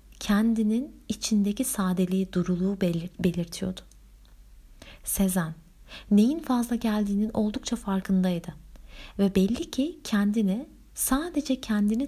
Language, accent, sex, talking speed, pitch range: Turkish, native, female, 85 wpm, 170-215 Hz